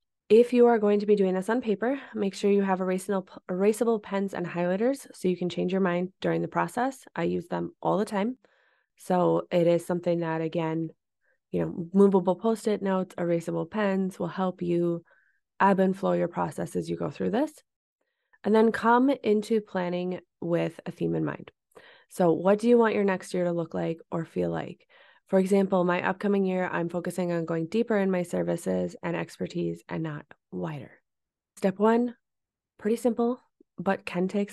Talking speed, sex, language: 190 wpm, female, English